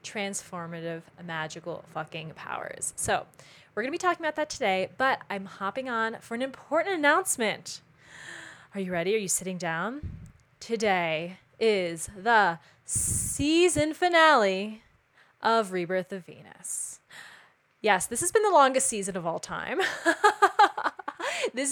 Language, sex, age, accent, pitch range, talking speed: English, female, 20-39, American, 180-270 Hz, 130 wpm